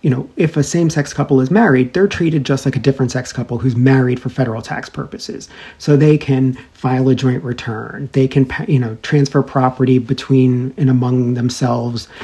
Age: 40-59